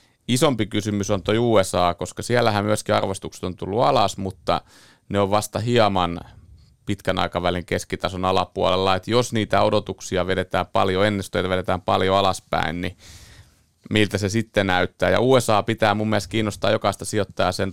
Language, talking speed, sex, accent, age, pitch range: Finnish, 150 wpm, male, native, 30-49, 95-115 Hz